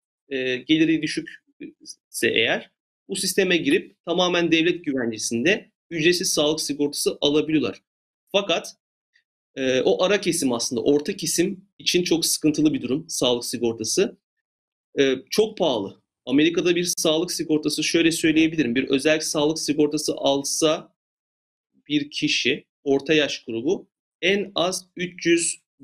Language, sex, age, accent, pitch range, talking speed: Turkish, male, 40-59, native, 140-185 Hz, 120 wpm